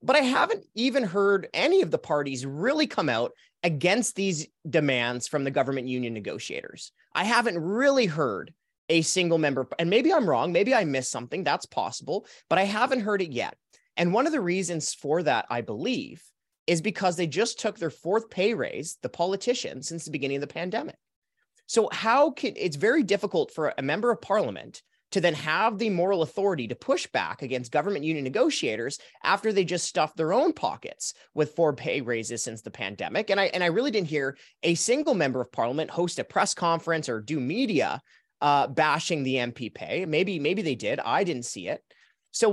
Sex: male